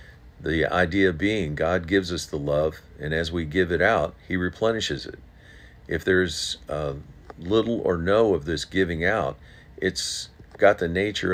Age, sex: 50-69, male